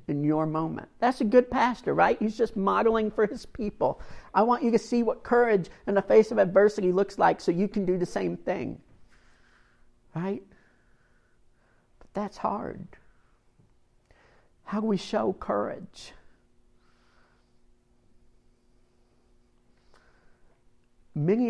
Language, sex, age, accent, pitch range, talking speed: English, male, 50-69, American, 145-215 Hz, 125 wpm